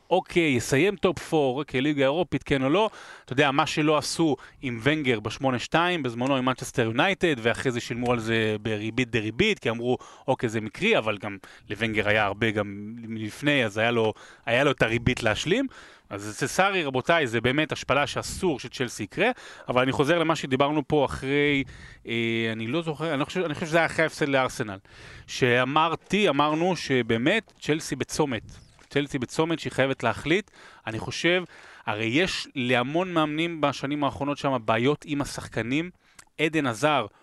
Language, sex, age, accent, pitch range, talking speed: Hebrew, male, 30-49, native, 115-160 Hz, 170 wpm